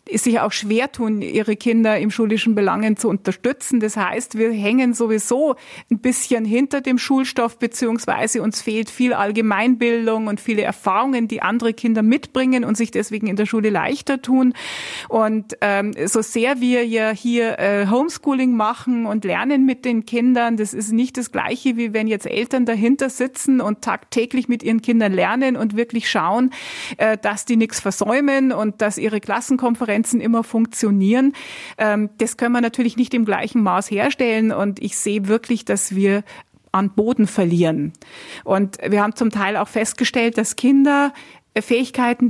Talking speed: 165 wpm